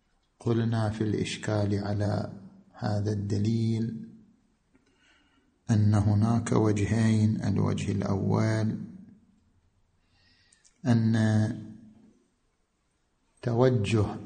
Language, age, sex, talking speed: Arabic, 50-69, male, 55 wpm